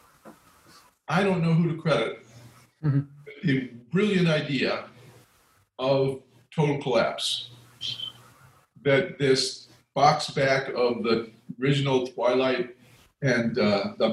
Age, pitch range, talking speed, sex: 50-69, 125-160 Hz, 100 wpm, male